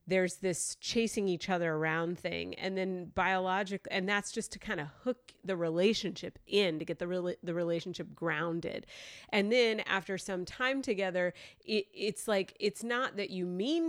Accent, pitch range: American, 175-225 Hz